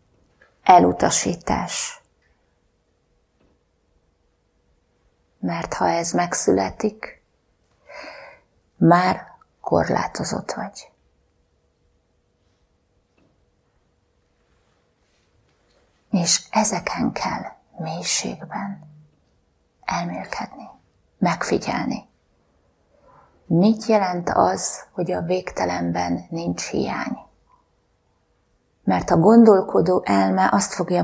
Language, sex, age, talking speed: Hungarian, female, 30-49, 55 wpm